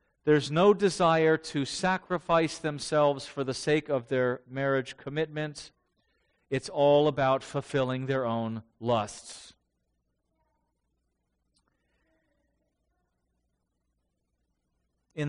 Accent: American